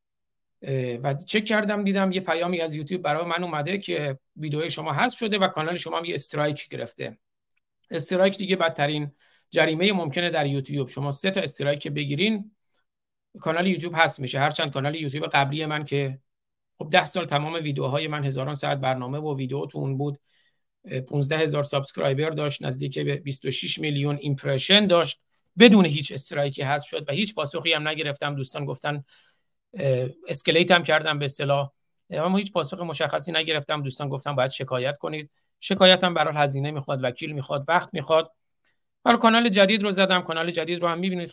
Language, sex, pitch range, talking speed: Persian, male, 140-180 Hz, 170 wpm